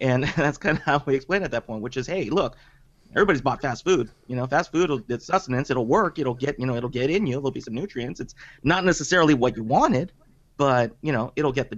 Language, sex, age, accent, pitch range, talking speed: English, male, 30-49, American, 120-155 Hz, 245 wpm